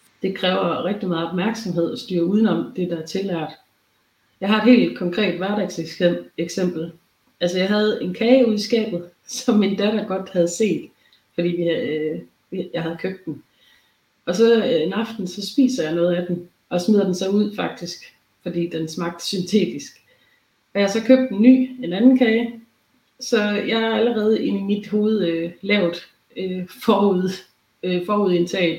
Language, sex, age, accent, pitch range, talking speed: Danish, female, 30-49, native, 175-210 Hz, 165 wpm